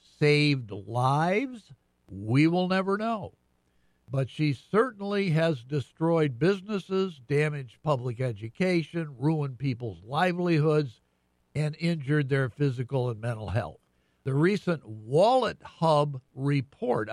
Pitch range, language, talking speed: 125-165 Hz, English, 105 wpm